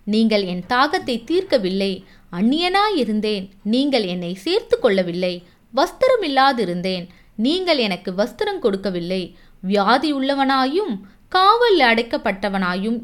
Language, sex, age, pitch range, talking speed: Tamil, female, 20-39, 190-290 Hz, 85 wpm